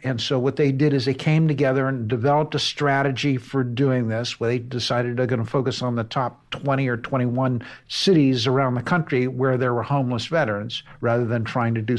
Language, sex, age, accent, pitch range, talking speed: English, male, 60-79, American, 120-150 Hz, 215 wpm